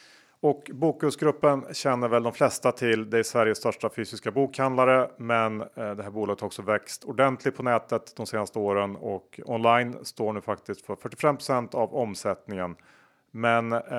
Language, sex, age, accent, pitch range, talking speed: Swedish, male, 30-49, Norwegian, 105-130 Hz, 160 wpm